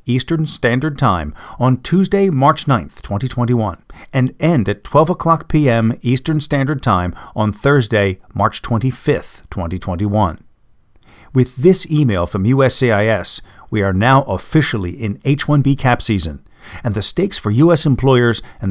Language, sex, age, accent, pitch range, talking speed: English, male, 50-69, American, 105-150 Hz, 135 wpm